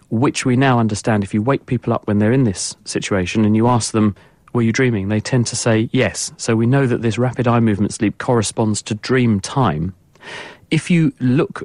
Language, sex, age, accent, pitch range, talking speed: English, male, 40-59, British, 105-125 Hz, 215 wpm